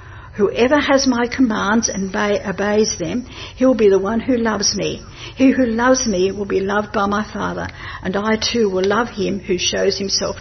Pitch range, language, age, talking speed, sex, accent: 195-235 Hz, English, 60-79, 195 wpm, female, Australian